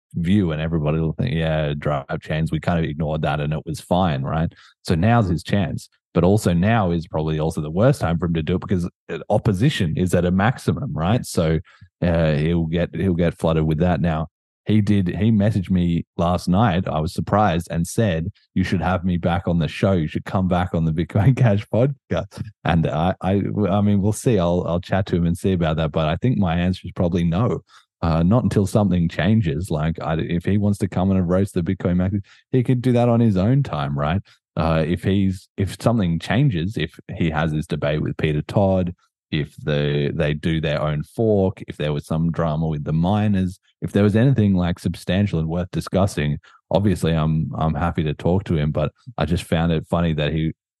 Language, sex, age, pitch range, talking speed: English, male, 30-49, 80-100 Hz, 220 wpm